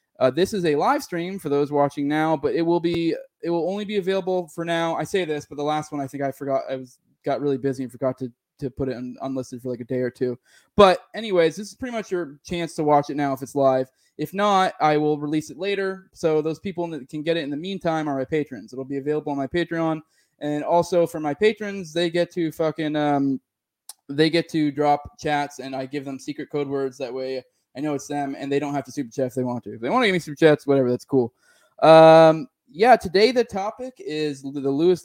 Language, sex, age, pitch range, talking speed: English, male, 20-39, 140-170 Hz, 255 wpm